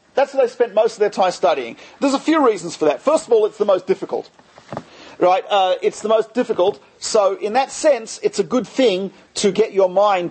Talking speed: 235 wpm